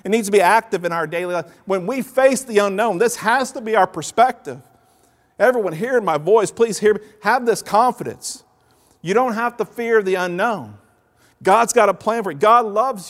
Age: 50-69